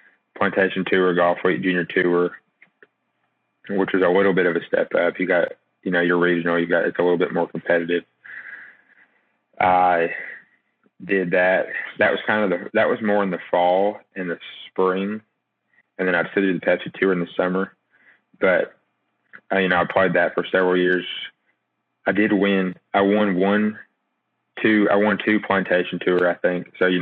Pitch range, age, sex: 90-95 Hz, 20-39, male